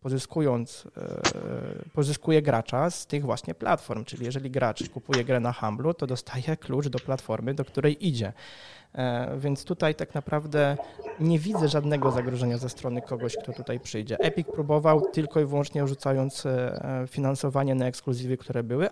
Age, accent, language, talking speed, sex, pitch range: 20-39, native, Polish, 150 wpm, male, 130-155 Hz